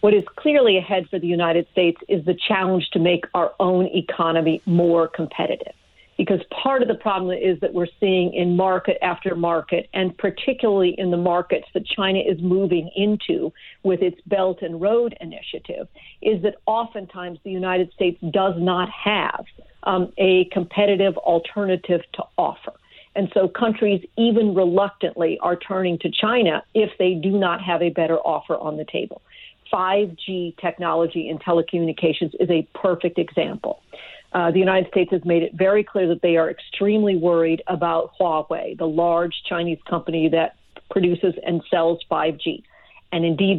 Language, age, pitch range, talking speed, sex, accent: English, 50-69, 170-200 Hz, 160 wpm, female, American